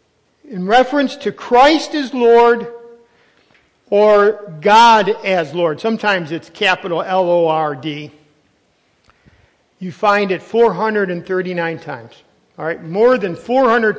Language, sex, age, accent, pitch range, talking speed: English, male, 50-69, American, 170-235 Hz, 115 wpm